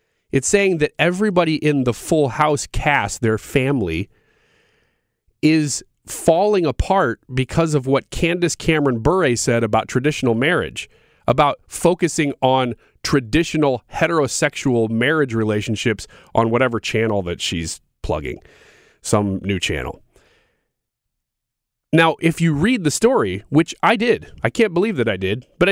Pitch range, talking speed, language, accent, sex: 120-170 Hz, 130 wpm, English, American, male